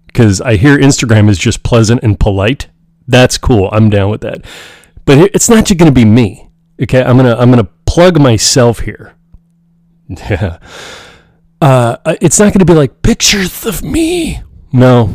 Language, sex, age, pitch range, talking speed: English, male, 30-49, 110-175 Hz, 160 wpm